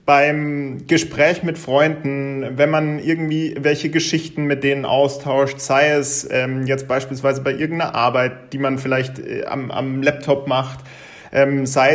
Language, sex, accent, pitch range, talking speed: German, male, German, 135-155 Hz, 150 wpm